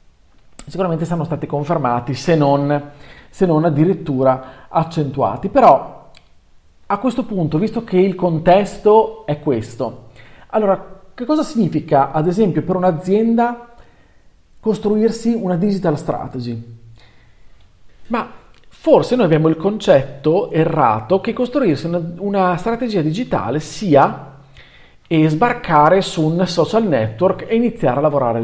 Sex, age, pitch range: male, 40-59, 130-195 Hz